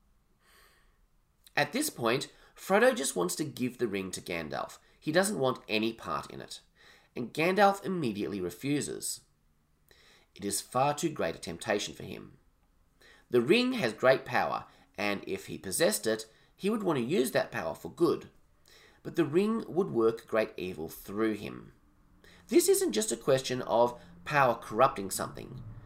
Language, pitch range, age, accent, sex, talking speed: English, 85-140 Hz, 30-49, Australian, male, 160 wpm